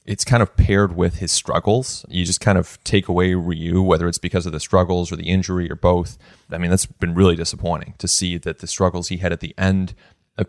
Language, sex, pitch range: English, male, 90-105 Hz